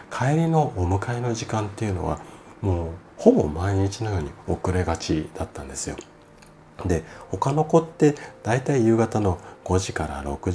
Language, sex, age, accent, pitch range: Japanese, male, 40-59, native, 75-100 Hz